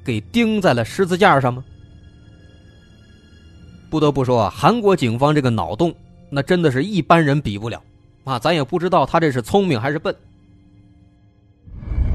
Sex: male